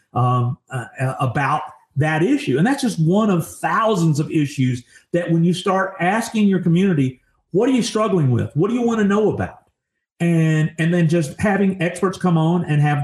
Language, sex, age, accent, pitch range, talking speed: English, male, 50-69, American, 140-190 Hz, 195 wpm